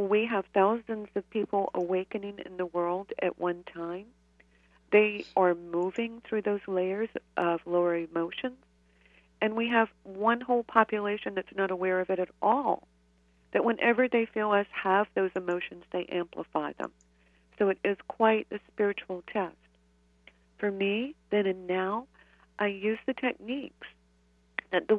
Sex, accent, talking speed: female, American, 150 wpm